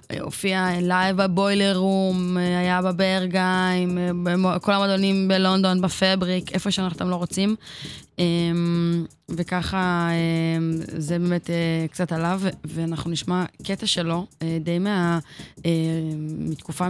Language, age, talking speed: Hebrew, 20-39, 95 wpm